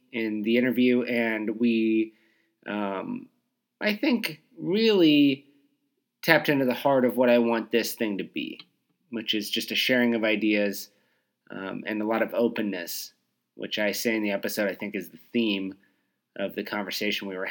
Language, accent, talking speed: English, American, 170 wpm